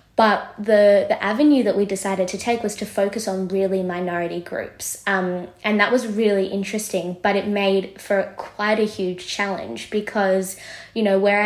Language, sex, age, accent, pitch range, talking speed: English, female, 20-39, Australian, 185-205 Hz, 180 wpm